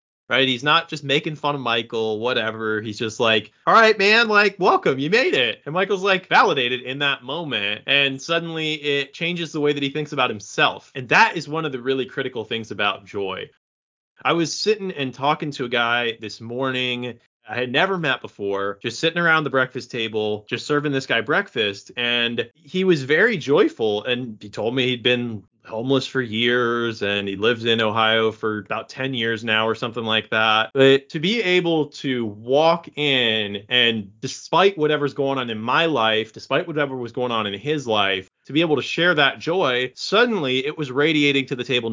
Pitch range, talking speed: 120-160 Hz, 200 wpm